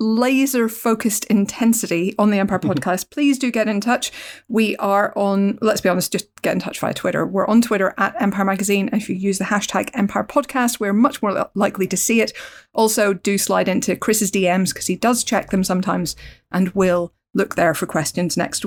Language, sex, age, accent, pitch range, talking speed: English, female, 40-59, British, 200-250 Hz, 205 wpm